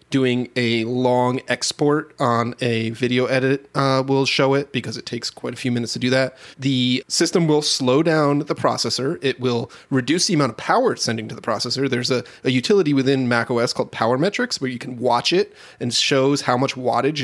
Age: 30-49